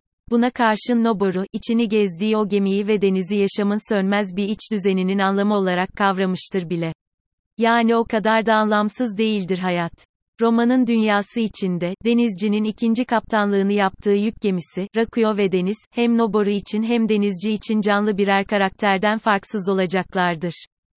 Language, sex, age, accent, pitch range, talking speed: Turkish, female, 30-49, native, 195-225 Hz, 135 wpm